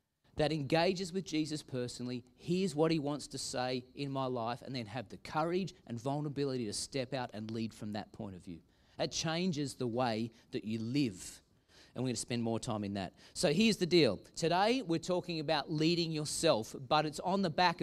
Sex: male